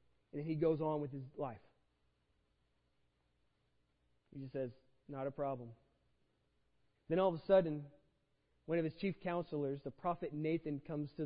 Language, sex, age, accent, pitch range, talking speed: English, male, 30-49, American, 135-225 Hz, 150 wpm